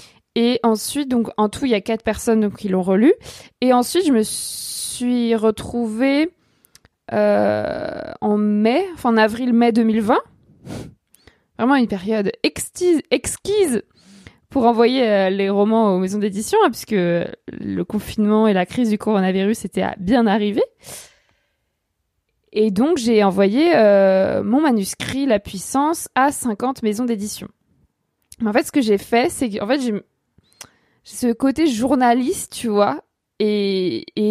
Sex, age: female, 20-39